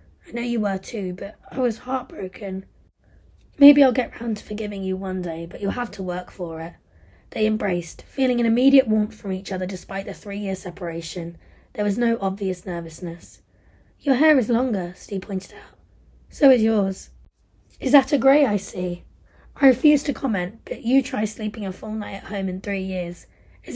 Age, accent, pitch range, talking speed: 20-39, British, 195-255 Hz, 190 wpm